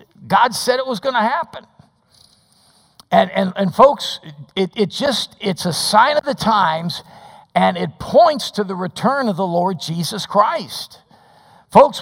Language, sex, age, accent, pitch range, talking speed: English, male, 50-69, American, 160-210 Hz, 155 wpm